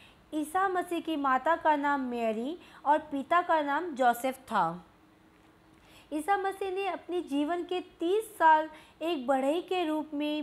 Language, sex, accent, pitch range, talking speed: Hindi, female, native, 280-345 Hz, 150 wpm